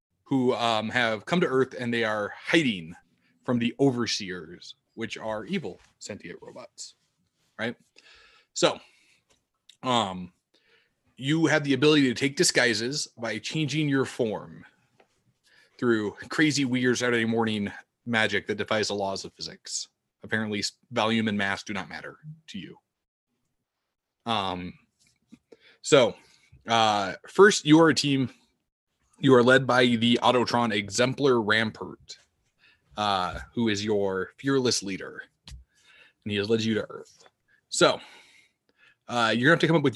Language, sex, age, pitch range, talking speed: English, male, 20-39, 110-140 Hz, 135 wpm